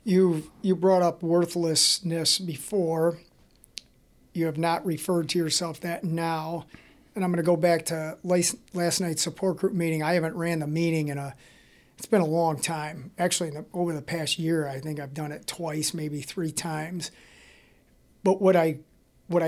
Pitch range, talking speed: 155-175 Hz, 180 wpm